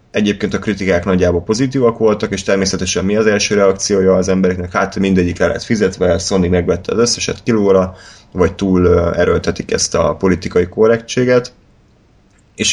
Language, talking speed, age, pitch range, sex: Hungarian, 150 wpm, 20-39, 90-100 Hz, male